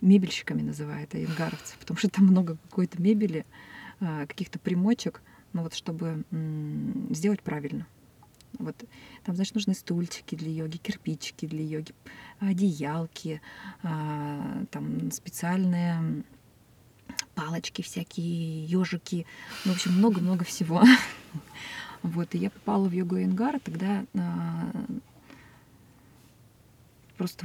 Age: 20-39